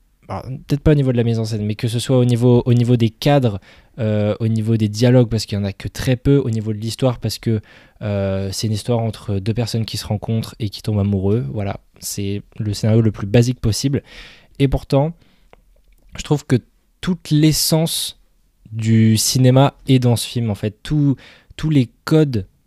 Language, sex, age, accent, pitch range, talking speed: French, male, 20-39, French, 105-130 Hz, 210 wpm